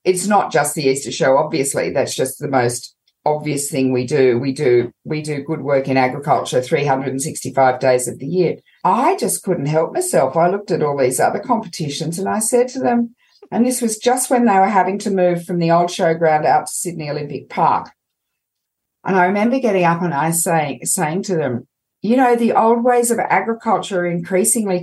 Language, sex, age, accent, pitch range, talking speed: English, female, 50-69, Australian, 155-230 Hz, 205 wpm